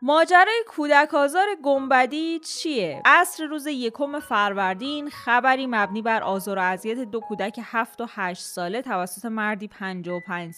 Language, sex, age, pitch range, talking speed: Persian, female, 20-39, 205-275 Hz, 140 wpm